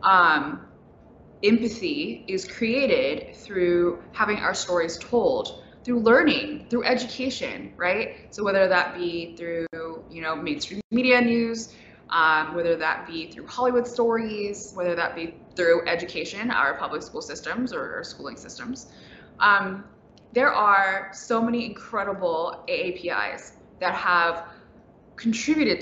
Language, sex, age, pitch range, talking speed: English, female, 20-39, 180-255 Hz, 125 wpm